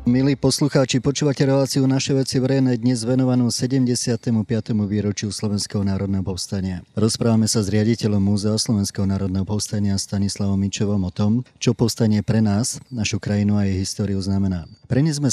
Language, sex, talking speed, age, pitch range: Slovak, male, 145 wpm, 30-49, 95-115 Hz